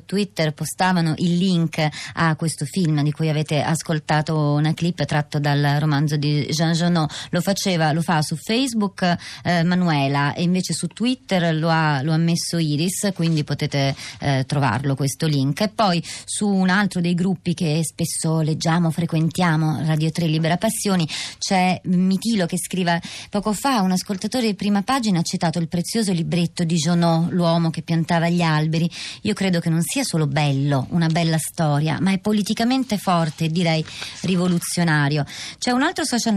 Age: 30-49